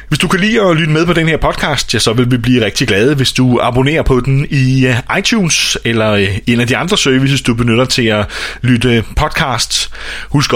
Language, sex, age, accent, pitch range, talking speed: Danish, male, 30-49, native, 85-130 Hz, 210 wpm